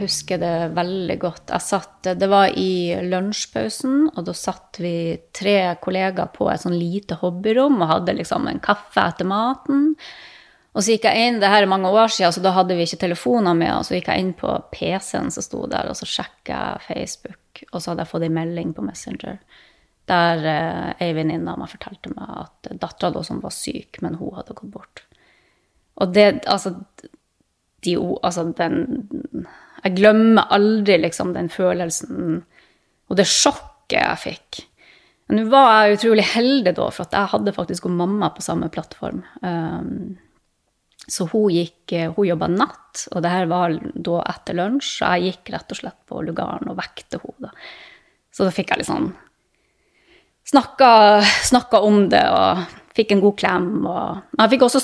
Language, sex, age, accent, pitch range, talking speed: English, female, 20-39, Swedish, 175-220 Hz, 170 wpm